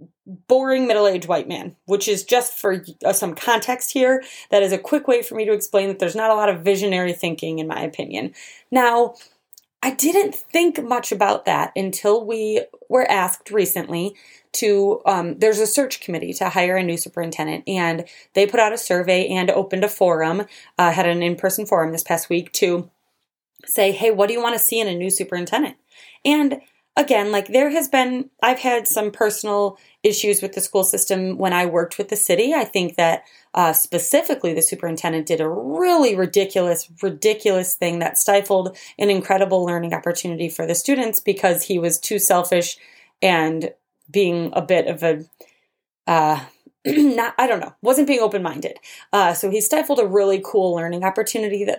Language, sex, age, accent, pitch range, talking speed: English, female, 30-49, American, 175-220 Hz, 180 wpm